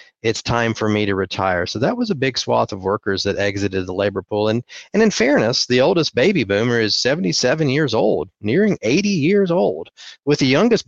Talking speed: 210 wpm